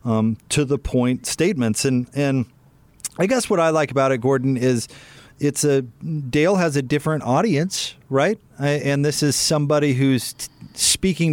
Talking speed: 170 wpm